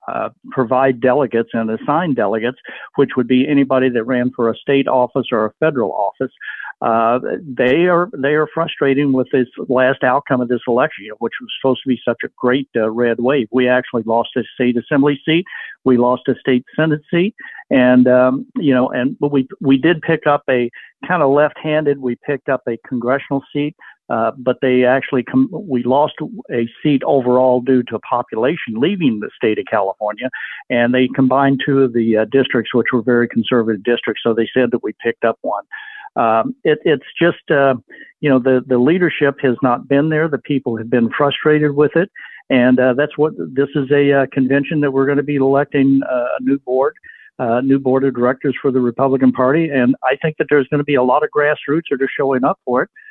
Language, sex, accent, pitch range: English, male, American, 125-145 Hz